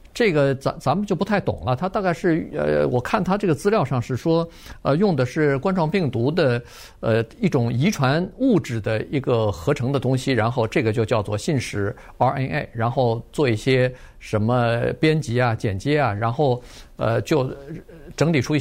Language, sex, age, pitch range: Chinese, male, 50-69, 115-150 Hz